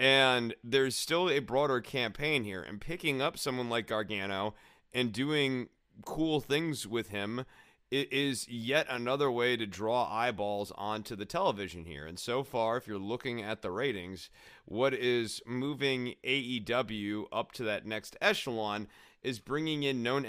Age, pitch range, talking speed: 30-49, 105-130 Hz, 155 wpm